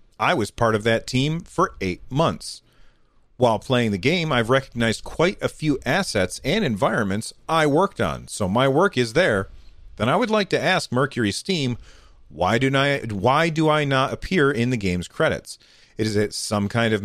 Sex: male